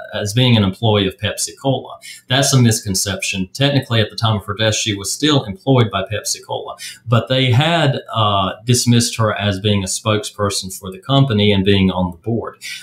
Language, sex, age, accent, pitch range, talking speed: English, male, 30-49, American, 95-115 Hz, 195 wpm